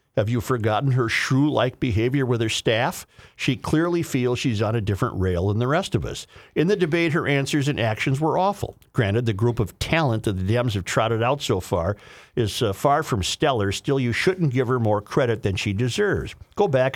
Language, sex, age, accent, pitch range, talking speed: English, male, 50-69, American, 105-135 Hz, 215 wpm